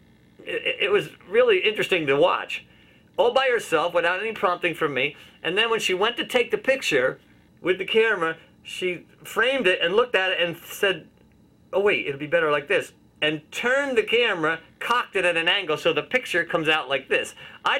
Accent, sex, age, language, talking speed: American, male, 40-59, English, 200 wpm